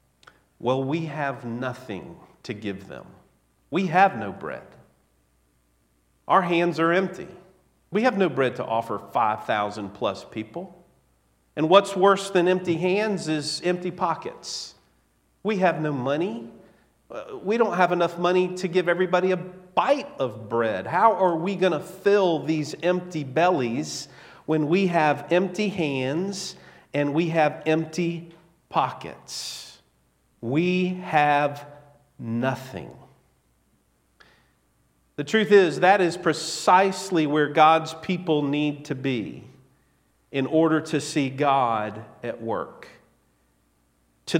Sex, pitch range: male, 115-180 Hz